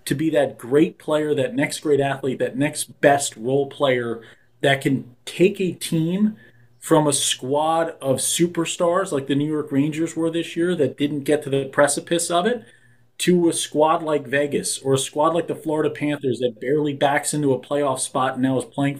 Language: English